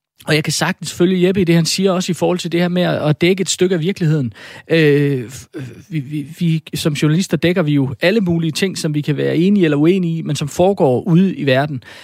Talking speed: 245 wpm